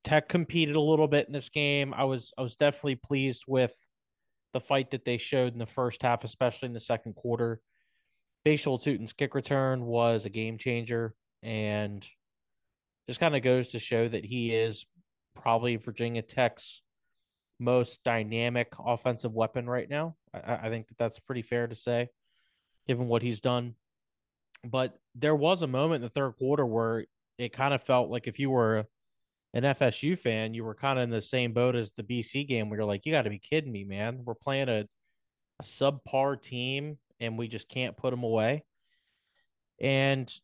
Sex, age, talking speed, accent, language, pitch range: male, 20-39, 190 wpm, American, English, 115-135 Hz